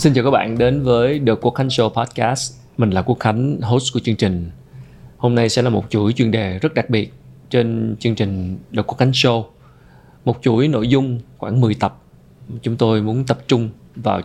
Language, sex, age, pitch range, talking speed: Vietnamese, male, 20-39, 105-130 Hz, 210 wpm